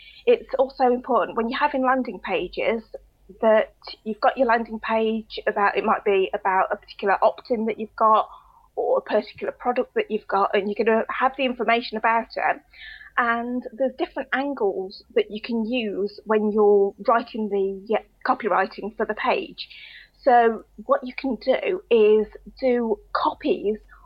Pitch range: 210-255 Hz